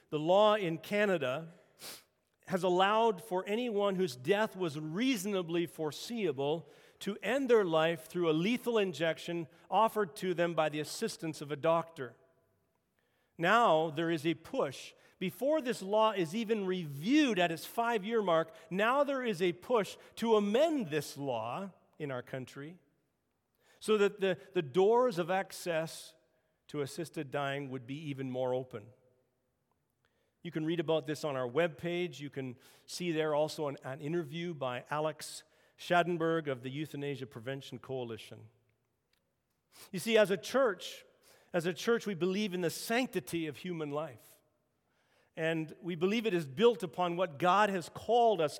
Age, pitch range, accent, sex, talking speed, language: 50-69, 150-200 Hz, American, male, 155 wpm, English